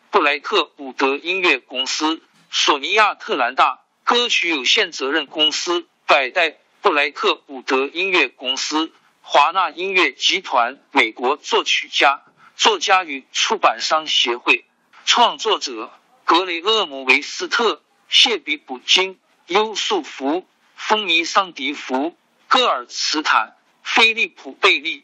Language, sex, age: Chinese, male, 50-69